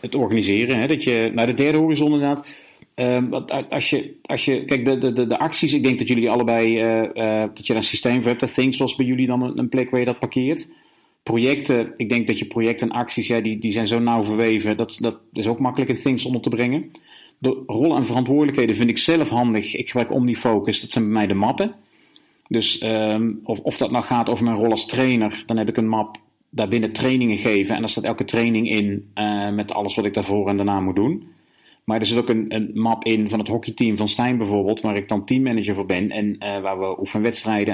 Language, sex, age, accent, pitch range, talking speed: Dutch, male, 40-59, Dutch, 110-130 Hz, 240 wpm